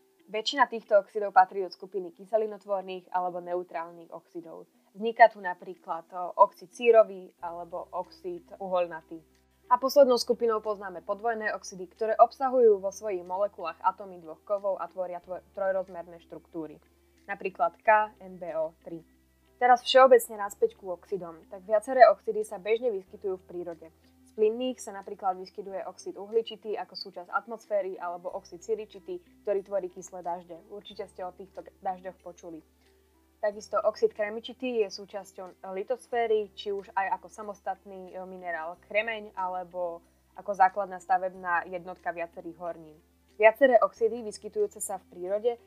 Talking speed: 130 wpm